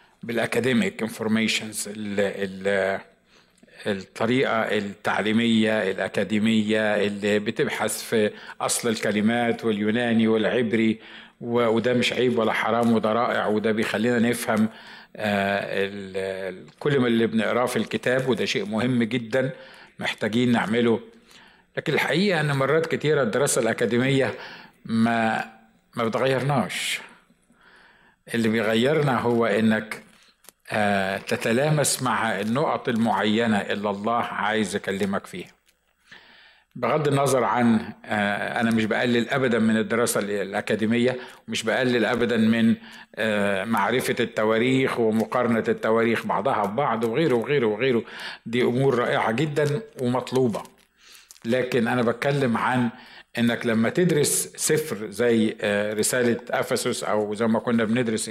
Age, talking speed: 50-69, 105 wpm